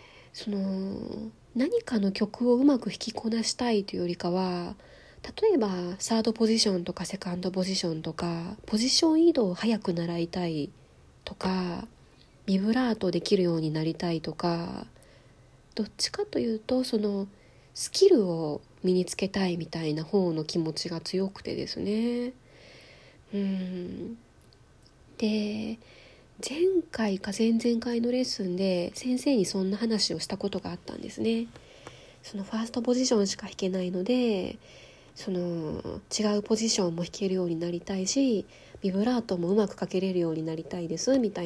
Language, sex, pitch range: Japanese, female, 180-230 Hz